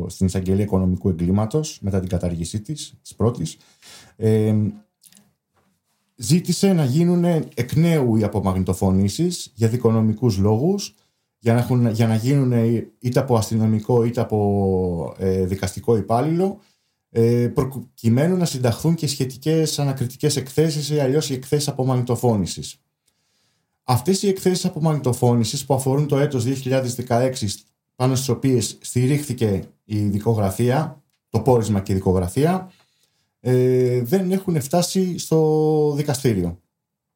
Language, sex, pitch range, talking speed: Greek, male, 110-150 Hz, 110 wpm